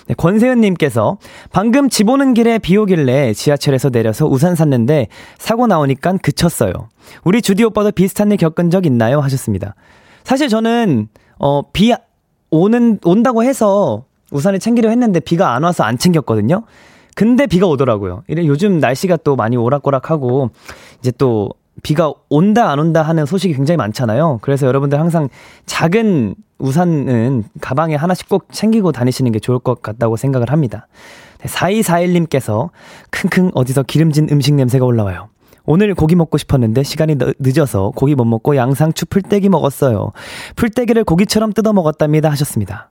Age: 20-39